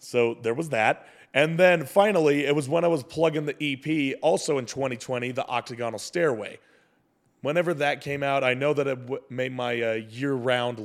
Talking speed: 190 wpm